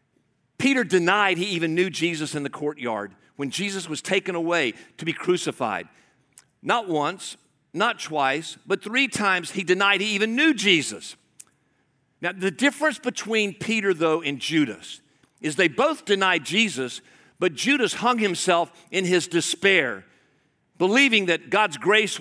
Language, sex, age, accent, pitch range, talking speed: English, male, 50-69, American, 170-235 Hz, 145 wpm